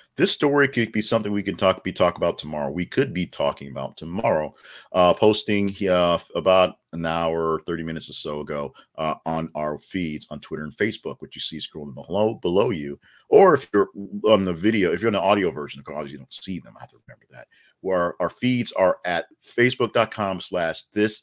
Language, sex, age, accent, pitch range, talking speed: English, male, 40-59, American, 85-105 Hz, 210 wpm